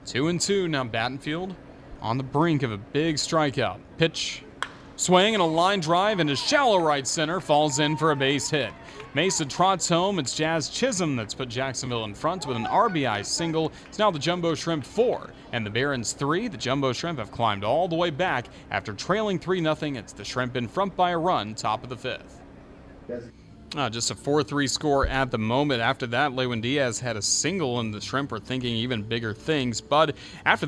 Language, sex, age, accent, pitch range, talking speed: English, male, 30-49, American, 115-155 Hz, 200 wpm